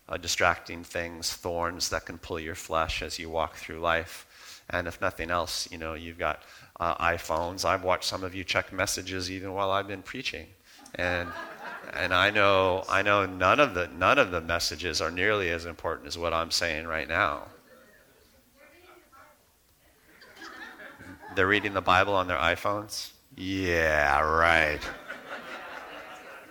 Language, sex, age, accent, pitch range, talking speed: English, male, 40-59, American, 85-95 Hz, 155 wpm